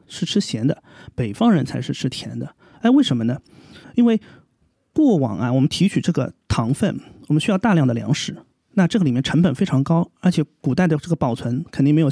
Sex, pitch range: male, 130-170 Hz